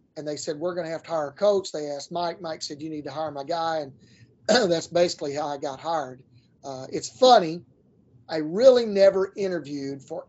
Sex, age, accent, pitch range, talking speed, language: male, 30-49, American, 145-175 Hz, 215 wpm, English